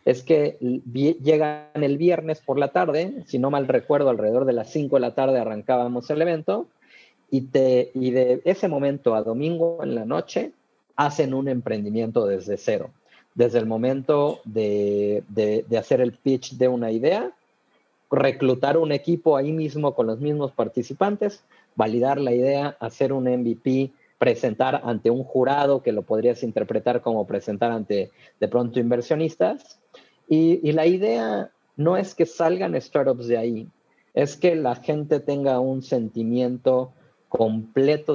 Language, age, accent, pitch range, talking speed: Spanish, 40-59, Mexican, 115-145 Hz, 155 wpm